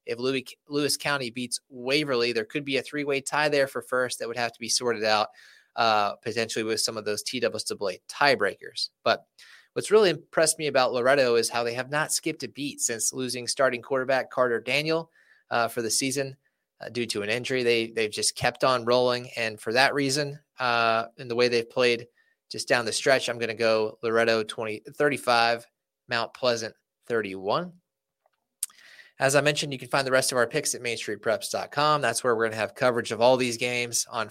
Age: 20-39